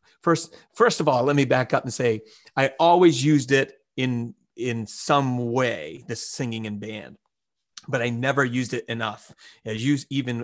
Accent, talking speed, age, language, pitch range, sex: American, 180 wpm, 30-49, English, 115-150 Hz, male